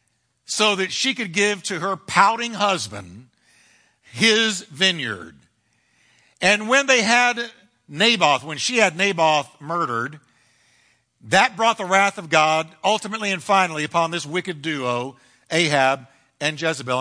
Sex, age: male, 60-79